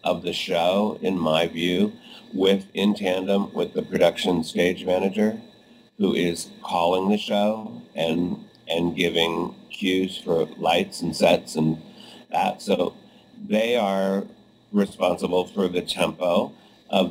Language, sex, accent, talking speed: English, male, American, 130 wpm